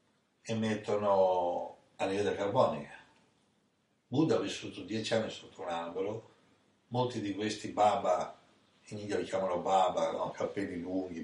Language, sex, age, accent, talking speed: Italian, male, 60-79, native, 125 wpm